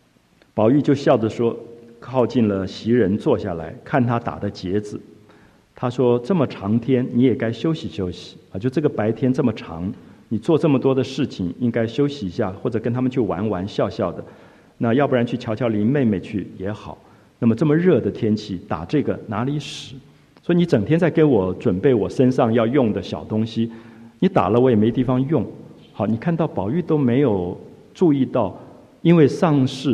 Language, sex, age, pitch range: Chinese, male, 50-69, 105-145 Hz